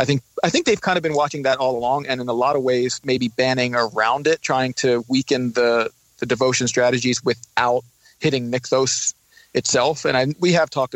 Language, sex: English, male